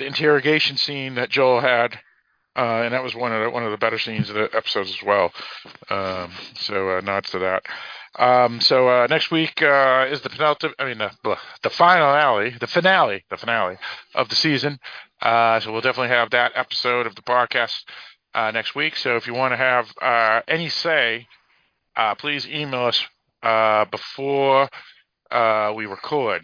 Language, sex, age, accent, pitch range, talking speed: English, male, 40-59, American, 105-130 Hz, 185 wpm